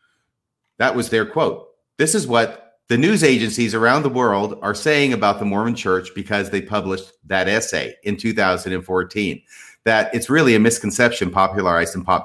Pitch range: 110-175 Hz